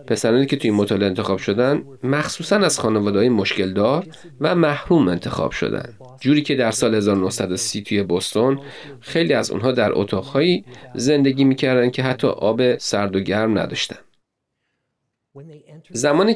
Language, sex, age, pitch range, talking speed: Persian, male, 40-59, 105-145 Hz, 135 wpm